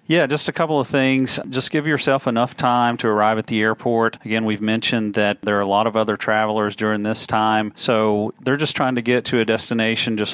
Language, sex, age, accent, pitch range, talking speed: English, male, 40-59, American, 105-125 Hz, 230 wpm